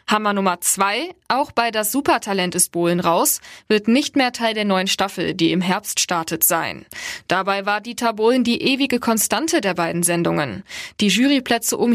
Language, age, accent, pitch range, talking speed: German, 20-39, German, 180-230 Hz, 175 wpm